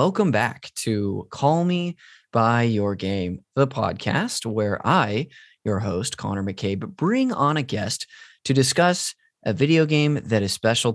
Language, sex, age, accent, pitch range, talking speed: English, male, 20-39, American, 105-140 Hz, 155 wpm